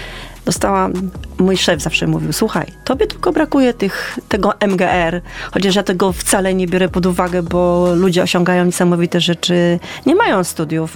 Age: 30-49